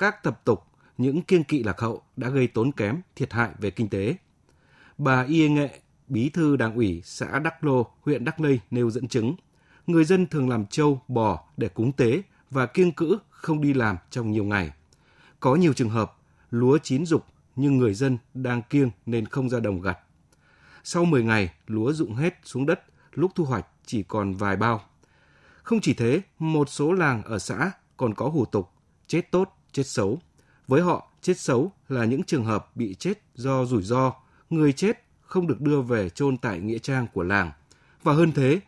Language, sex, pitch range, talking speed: Vietnamese, male, 110-150 Hz, 195 wpm